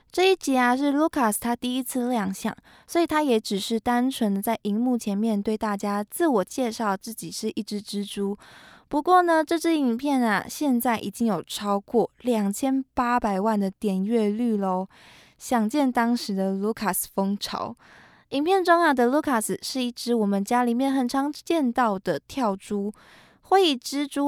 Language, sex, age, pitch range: Chinese, female, 20-39, 210-285 Hz